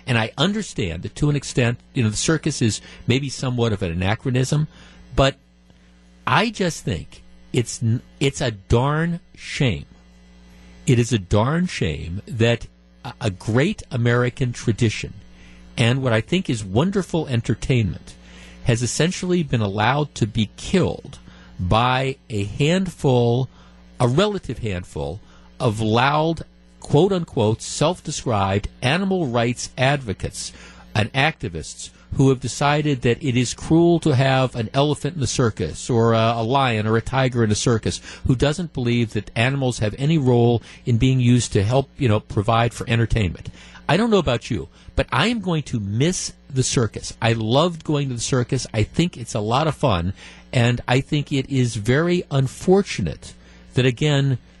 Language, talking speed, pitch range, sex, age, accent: English, 155 wpm, 105-140 Hz, male, 50-69, American